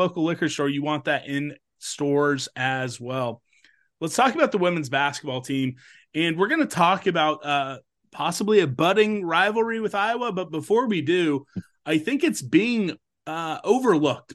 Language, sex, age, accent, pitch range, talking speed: English, male, 30-49, American, 140-165 Hz, 165 wpm